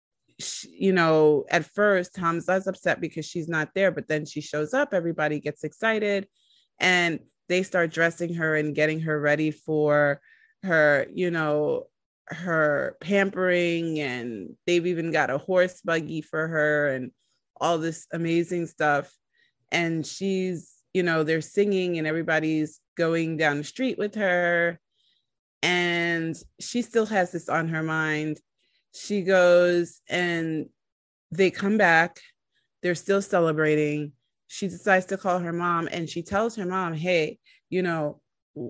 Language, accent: English, American